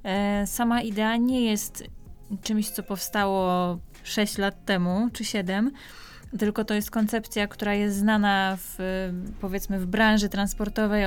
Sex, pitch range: female, 195-230 Hz